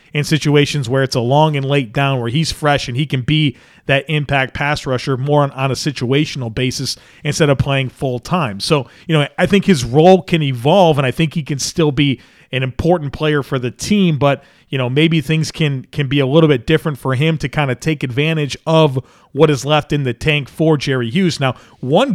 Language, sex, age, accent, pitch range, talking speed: English, male, 40-59, American, 130-160 Hz, 230 wpm